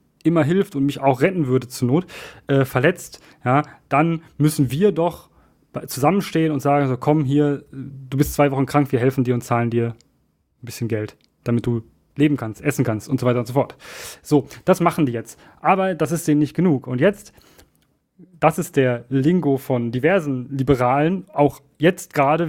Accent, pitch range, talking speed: German, 130-160 Hz, 190 wpm